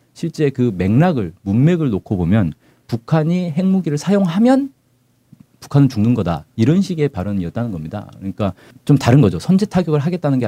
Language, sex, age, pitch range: Korean, male, 40-59, 105-155 Hz